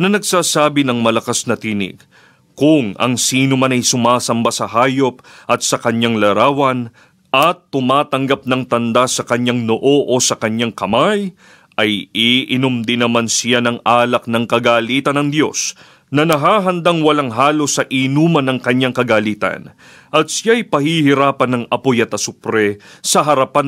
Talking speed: 150 wpm